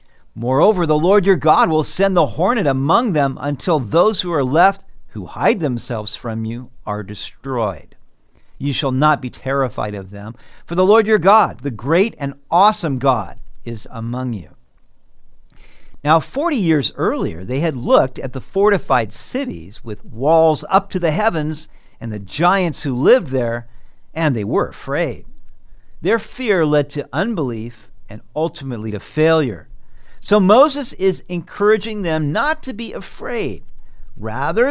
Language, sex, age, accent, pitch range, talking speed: English, male, 50-69, American, 125-200 Hz, 155 wpm